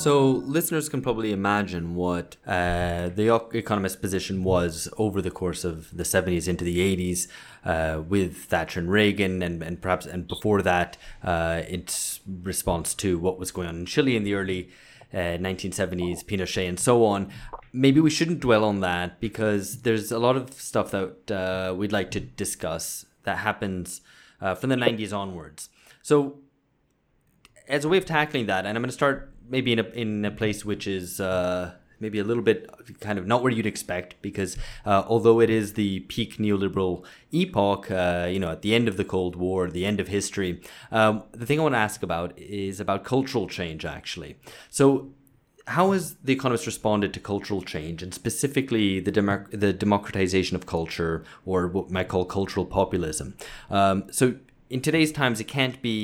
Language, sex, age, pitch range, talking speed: English, male, 20-39, 90-115 Hz, 185 wpm